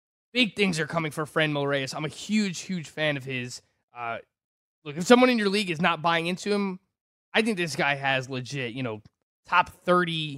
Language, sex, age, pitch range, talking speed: English, male, 20-39, 140-200 Hz, 210 wpm